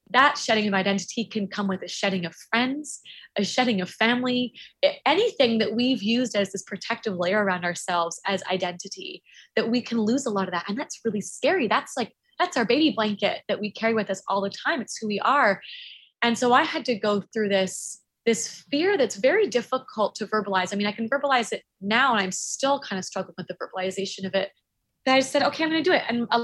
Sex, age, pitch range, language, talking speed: female, 20-39, 195-275 Hz, English, 230 wpm